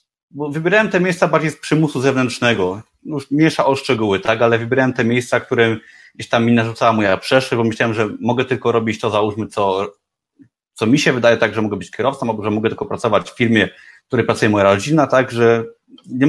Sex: male